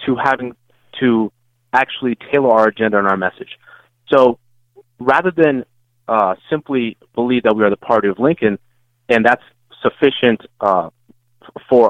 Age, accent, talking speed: 30-49, American, 140 wpm